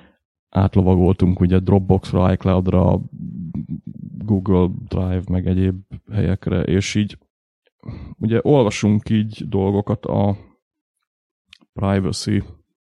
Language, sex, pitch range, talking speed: Hungarian, male, 95-105 Hz, 80 wpm